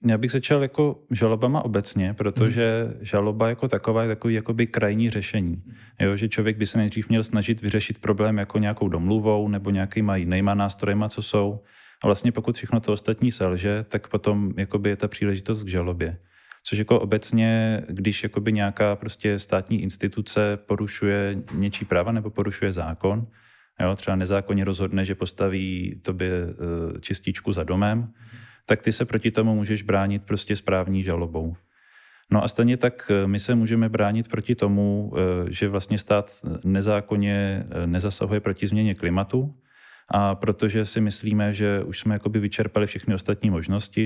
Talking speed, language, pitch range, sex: 155 wpm, Czech, 95-110 Hz, male